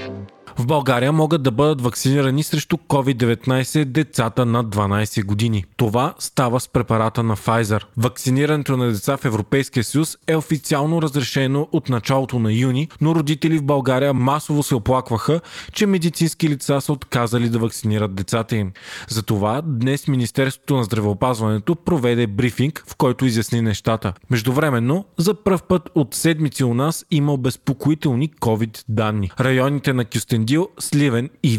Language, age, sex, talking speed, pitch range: Bulgarian, 20-39, male, 140 wpm, 115-145 Hz